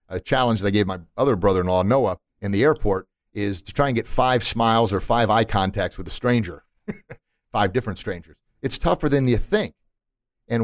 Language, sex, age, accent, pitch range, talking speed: English, male, 40-59, American, 100-120 Hz, 195 wpm